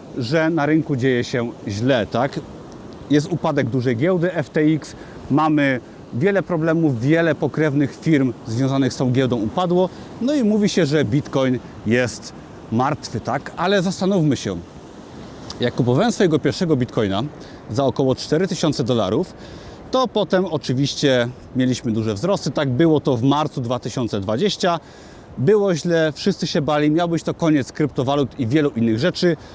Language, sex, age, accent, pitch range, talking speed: Polish, male, 40-59, native, 125-170 Hz, 140 wpm